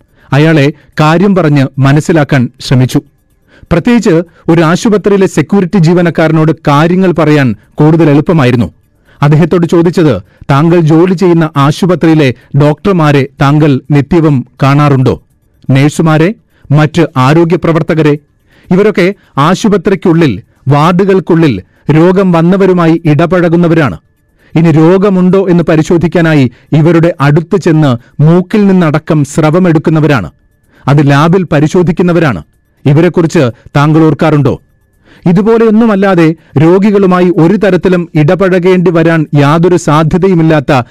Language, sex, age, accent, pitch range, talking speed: Malayalam, male, 40-59, native, 145-175 Hz, 85 wpm